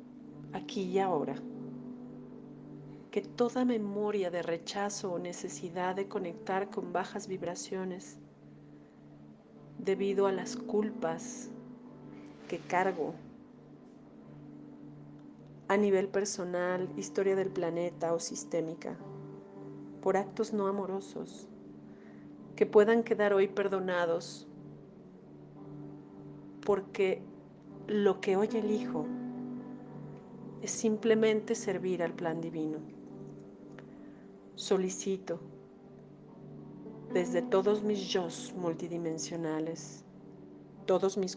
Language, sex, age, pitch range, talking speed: Spanish, female, 40-59, 165-215 Hz, 85 wpm